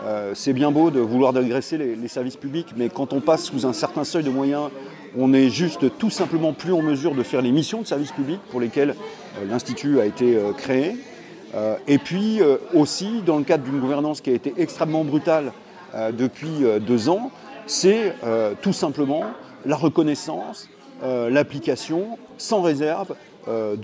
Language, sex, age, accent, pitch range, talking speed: French, male, 40-59, French, 130-165 Hz, 185 wpm